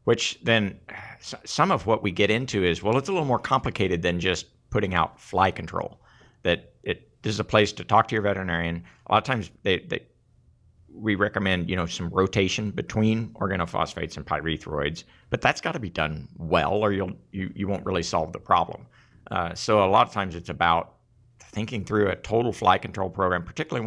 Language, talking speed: English, 200 wpm